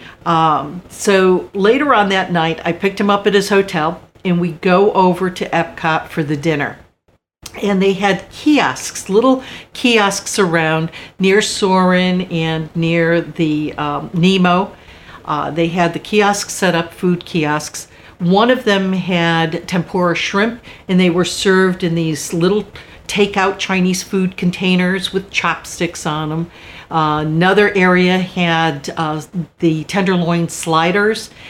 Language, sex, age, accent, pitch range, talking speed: English, female, 50-69, American, 165-195 Hz, 140 wpm